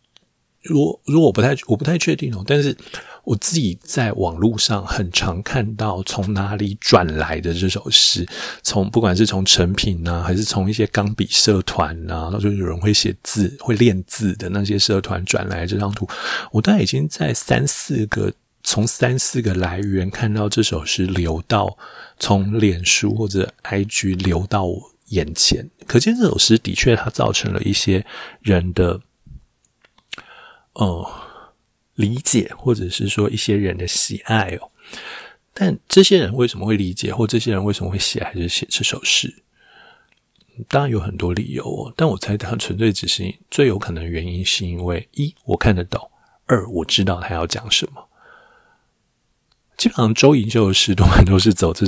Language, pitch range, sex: Chinese, 95-115 Hz, male